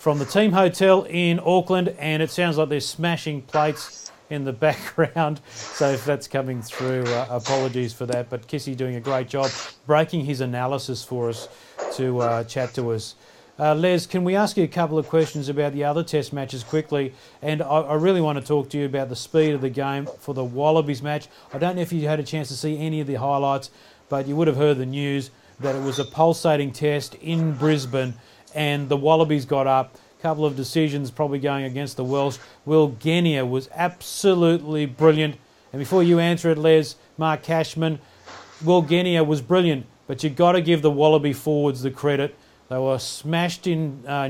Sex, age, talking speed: male, 40-59, 205 wpm